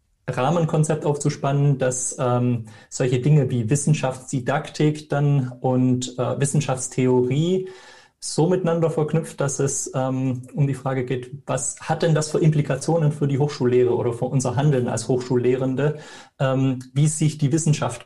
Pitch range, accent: 125-150 Hz, German